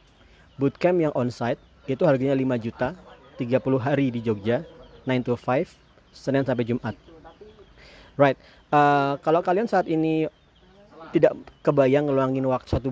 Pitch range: 120-150 Hz